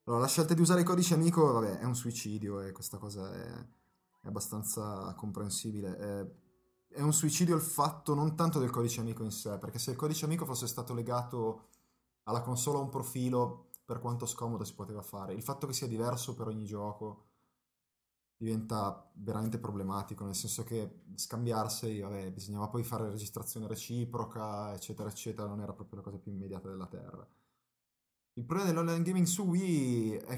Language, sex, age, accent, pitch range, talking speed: Italian, male, 20-39, native, 100-125 Hz, 180 wpm